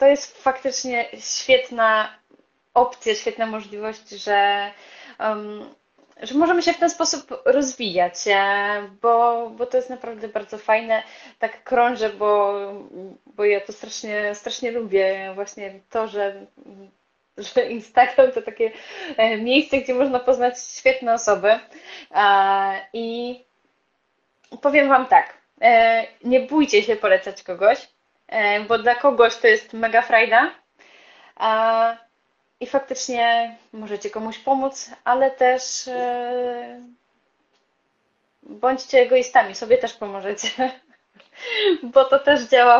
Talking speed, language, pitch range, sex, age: 105 wpm, Polish, 210-270 Hz, female, 10-29